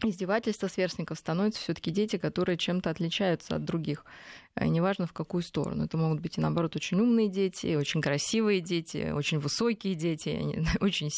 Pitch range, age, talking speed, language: 160-195 Hz, 20-39, 165 wpm, Russian